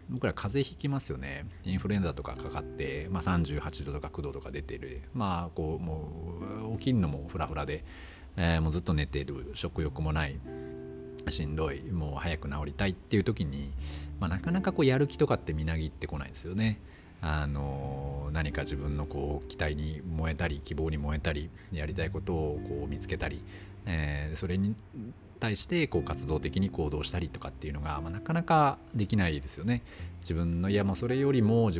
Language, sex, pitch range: Japanese, male, 75-100 Hz